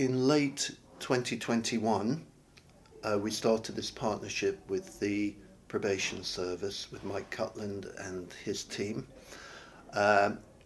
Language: English